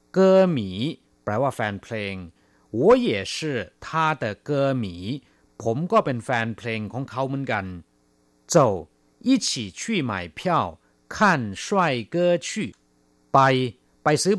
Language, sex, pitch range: Thai, male, 100-140 Hz